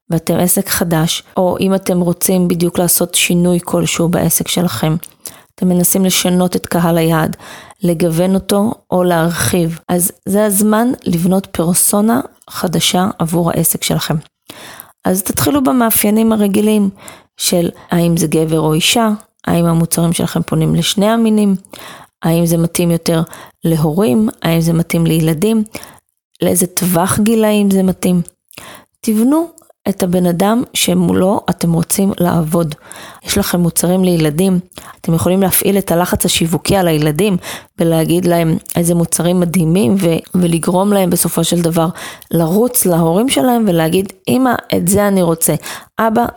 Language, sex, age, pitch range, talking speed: Hebrew, female, 20-39, 170-200 Hz, 135 wpm